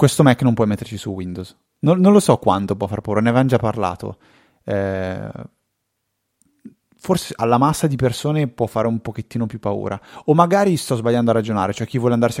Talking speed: 200 wpm